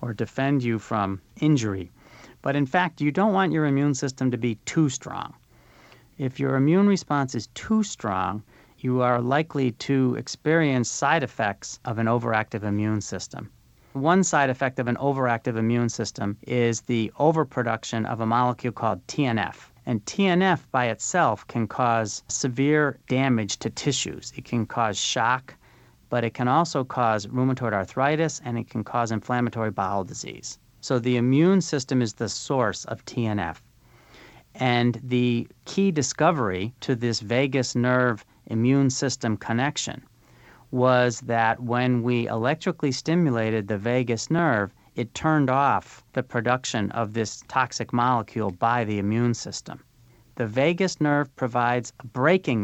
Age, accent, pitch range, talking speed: 40-59, American, 115-140 Hz, 145 wpm